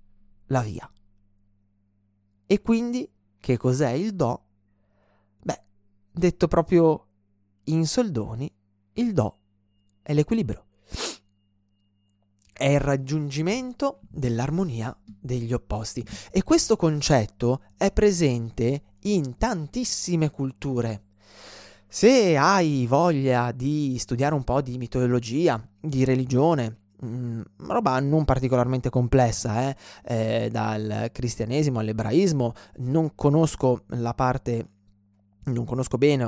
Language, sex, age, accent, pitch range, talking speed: Italian, male, 20-39, native, 105-145 Hz, 100 wpm